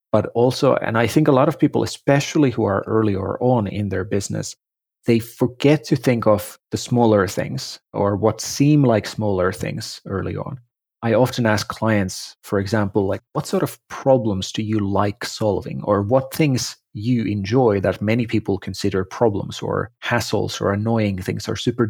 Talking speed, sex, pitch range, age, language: 180 wpm, male, 100-125 Hz, 30-49, English